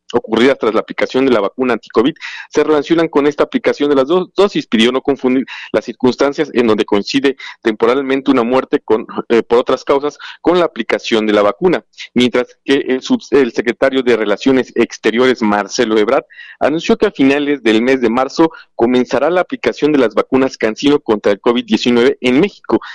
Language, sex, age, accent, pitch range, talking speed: Spanish, male, 40-59, Mexican, 115-145 Hz, 180 wpm